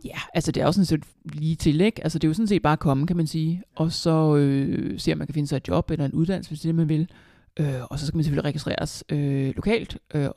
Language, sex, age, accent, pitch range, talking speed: Danish, male, 60-79, native, 145-175 Hz, 300 wpm